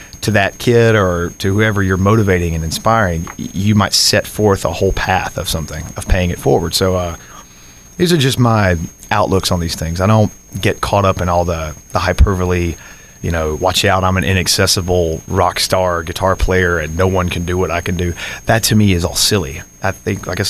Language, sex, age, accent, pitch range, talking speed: English, male, 30-49, American, 85-105 Hz, 215 wpm